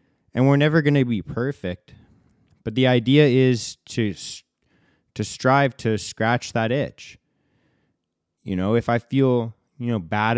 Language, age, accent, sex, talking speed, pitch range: English, 20-39, American, male, 150 wpm, 105-125 Hz